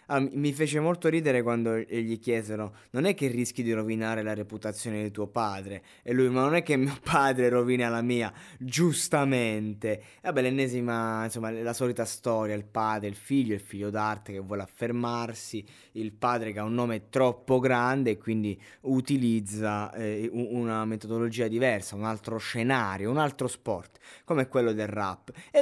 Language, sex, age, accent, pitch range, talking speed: Italian, male, 20-39, native, 105-130 Hz, 175 wpm